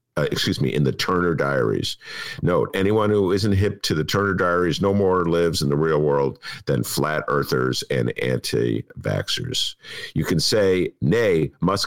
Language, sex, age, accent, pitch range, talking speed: English, male, 50-69, American, 75-100 Hz, 165 wpm